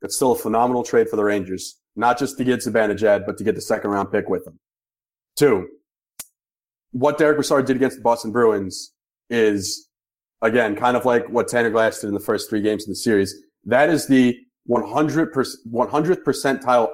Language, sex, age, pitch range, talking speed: English, male, 30-49, 115-150 Hz, 190 wpm